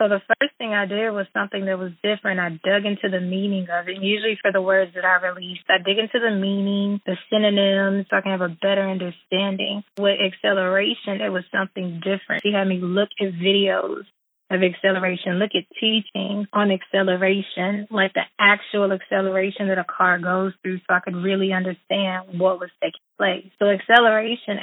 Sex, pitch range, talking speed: female, 190-215 Hz, 190 wpm